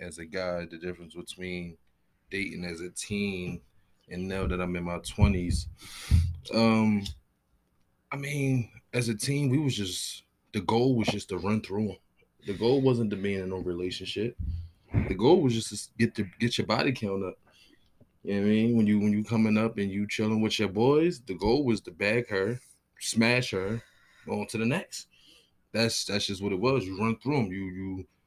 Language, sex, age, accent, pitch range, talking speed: English, male, 20-39, American, 90-110 Hz, 210 wpm